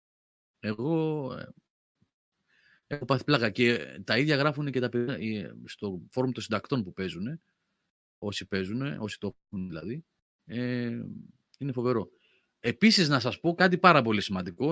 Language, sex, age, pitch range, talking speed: Greek, male, 30-49, 105-140 Hz, 140 wpm